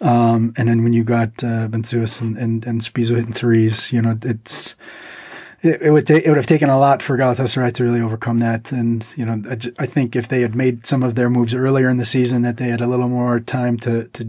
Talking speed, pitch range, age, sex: 255 wpm, 120-130 Hz, 30-49, male